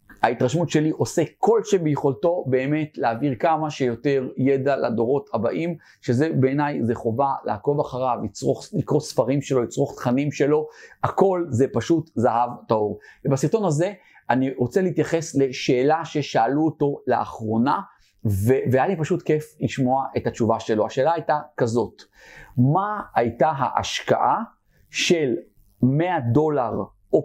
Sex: male